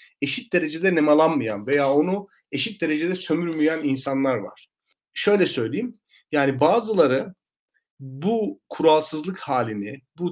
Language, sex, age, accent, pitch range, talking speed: Turkish, male, 40-59, native, 140-175 Hz, 105 wpm